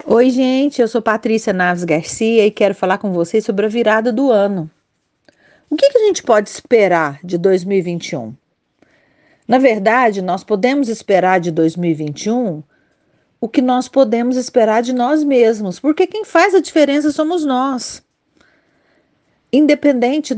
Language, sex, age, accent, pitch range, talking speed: Portuguese, female, 40-59, Brazilian, 185-275 Hz, 145 wpm